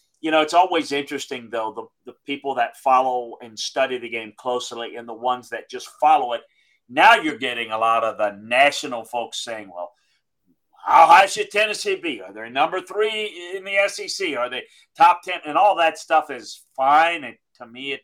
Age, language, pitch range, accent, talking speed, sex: 40-59, English, 125-160 Hz, American, 200 wpm, male